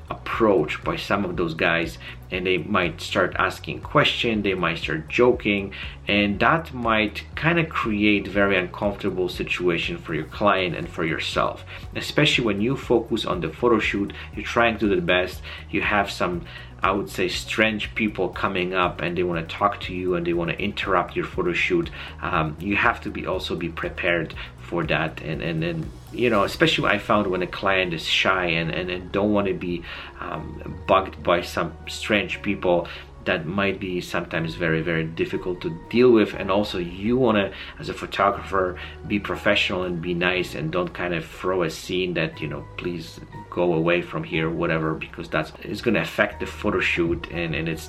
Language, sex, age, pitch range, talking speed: English, male, 40-59, 80-105 Hz, 190 wpm